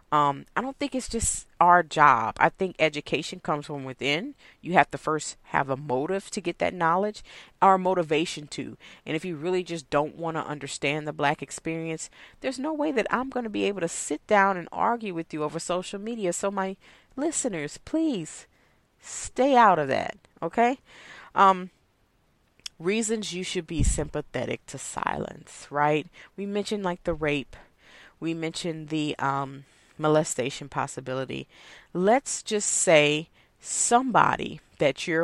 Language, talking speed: English, 160 wpm